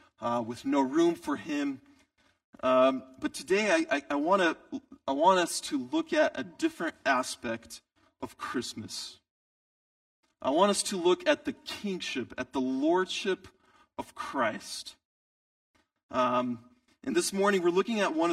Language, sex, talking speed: English, male, 145 wpm